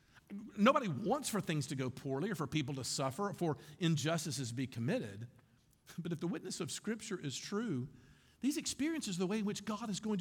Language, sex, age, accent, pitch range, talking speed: English, male, 50-69, American, 135-215 Hz, 205 wpm